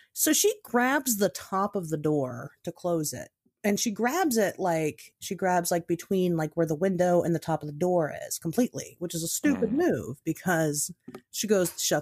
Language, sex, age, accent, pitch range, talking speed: English, female, 30-49, American, 170-250 Hz, 210 wpm